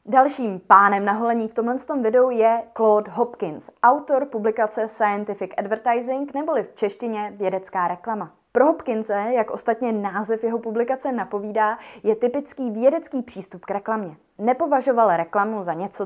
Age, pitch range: 20-39, 200-255 Hz